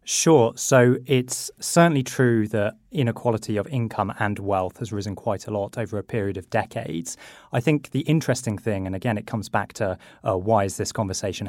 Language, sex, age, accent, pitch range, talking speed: English, male, 20-39, British, 105-125 Hz, 195 wpm